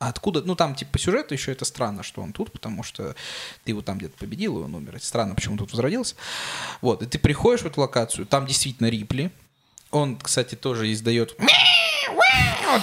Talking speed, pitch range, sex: 200 wpm, 115-150 Hz, male